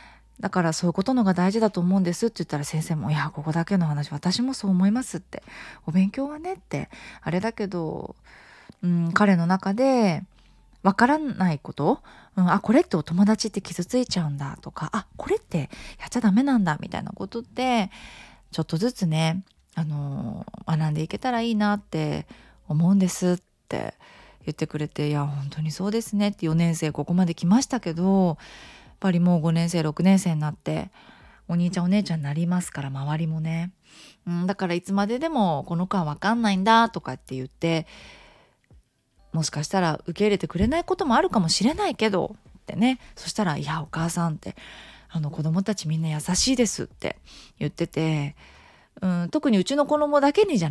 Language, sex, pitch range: Japanese, female, 160-220 Hz